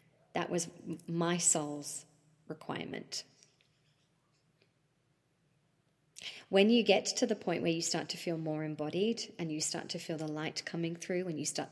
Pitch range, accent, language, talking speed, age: 155-185 Hz, Australian, English, 155 wpm, 30-49